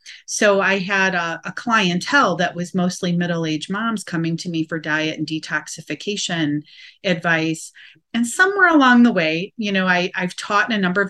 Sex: female